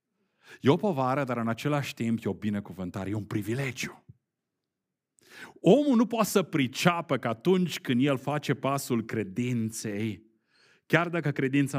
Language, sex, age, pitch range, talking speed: Romanian, male, 40-59, 100-165 Hz, 145 wpm